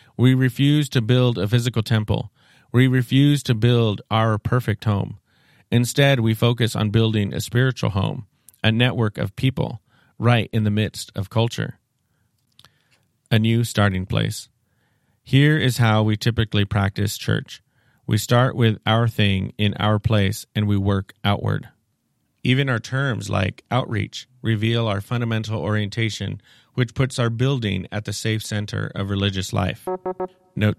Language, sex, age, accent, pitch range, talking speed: English, male, 40-59, American, 105-125 Hz, 150 wpm